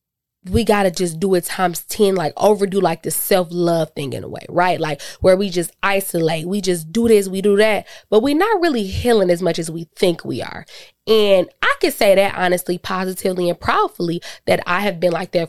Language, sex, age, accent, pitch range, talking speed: English, female, 20-39, American, 175-220 Hz, 225 wpm